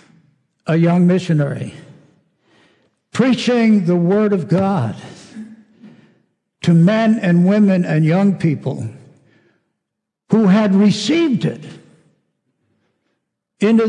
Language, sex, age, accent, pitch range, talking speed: English, male, 60-79, American, 160-205 Hz, 85 wpm